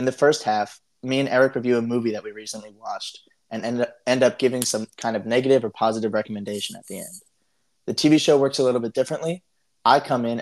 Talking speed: 225 wpm